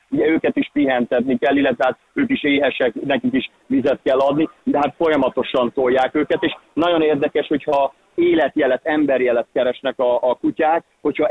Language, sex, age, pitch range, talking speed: Hungarian, male, 30-49, 125-150 Hz, 165 wpm